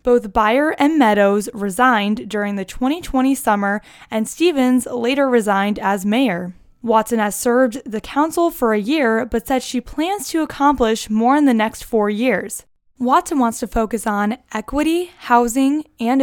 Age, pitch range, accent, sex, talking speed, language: 10-29, 210-265 Hz, American, female, 160 wpm, English